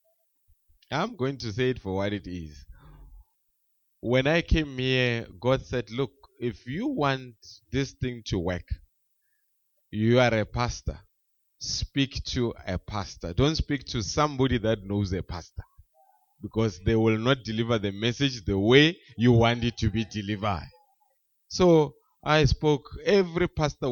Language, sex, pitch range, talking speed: English, male, 100-130 Hz, 150 wpm